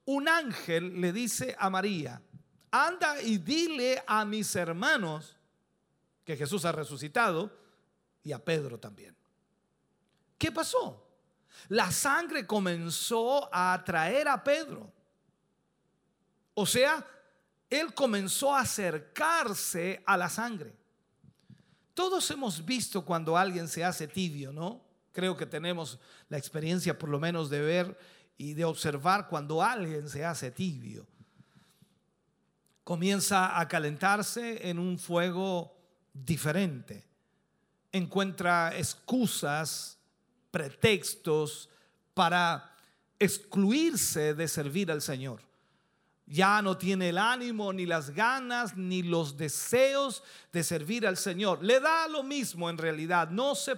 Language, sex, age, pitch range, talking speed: Spanish, male, 50-69, 165-215 Hz, 115 wpm